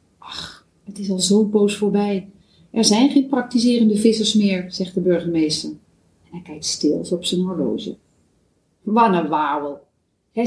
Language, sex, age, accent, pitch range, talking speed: Dutch, female, 40-59, Dutch, 175-225 Hz, 150 wpm